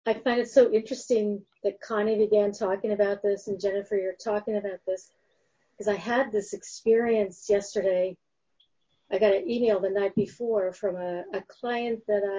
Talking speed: 170 wpm